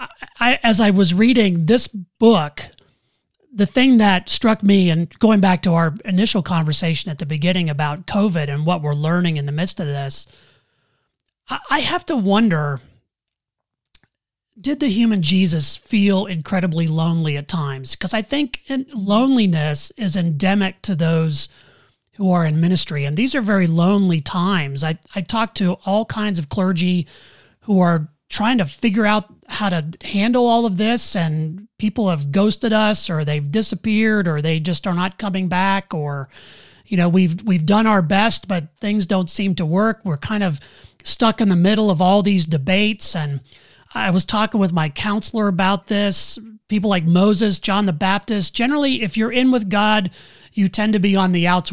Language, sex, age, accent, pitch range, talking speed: English, male, 30-49, American, 165-215 Hz, 175 wpm